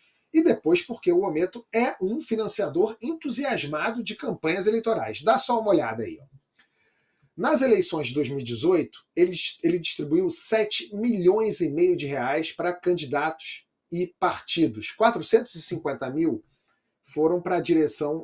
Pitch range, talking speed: 155-230 Hz, 130 wpm